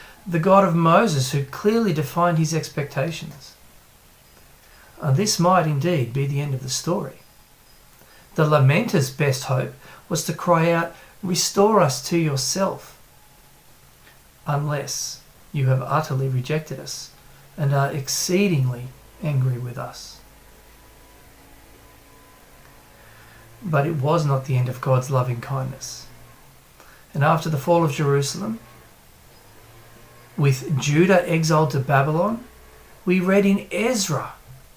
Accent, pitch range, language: Australian, 130-170 Hz, English